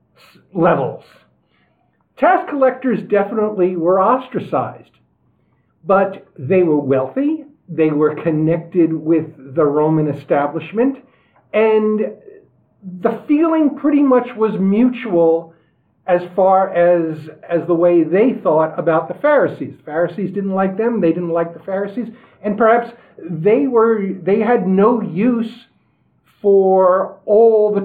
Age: 50-69